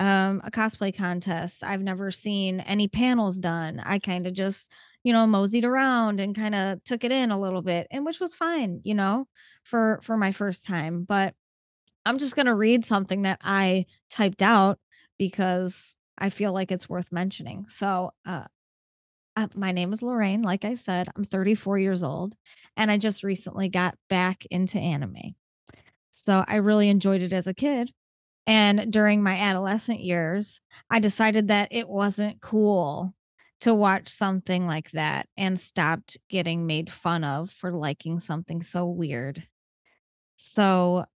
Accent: American